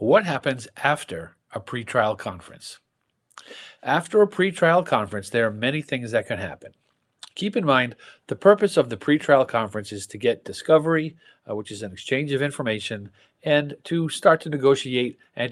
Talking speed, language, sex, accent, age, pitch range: 165 wpm, English, male, American, 50-69, 105-150 Hz